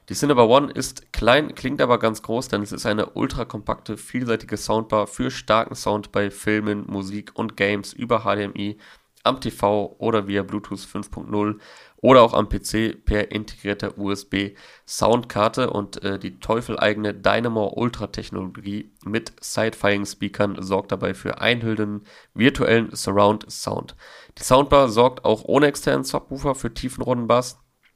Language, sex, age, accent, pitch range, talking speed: German, male, 30-49, German, 100-115 Hz, 140 wpm